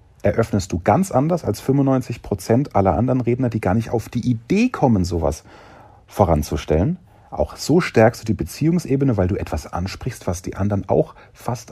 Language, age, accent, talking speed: German, 40-59, German, 170 wpm